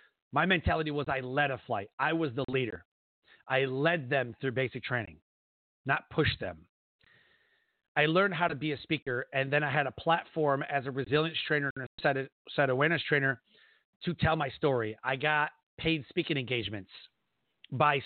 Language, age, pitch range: English, 40-59, 130-155 Hz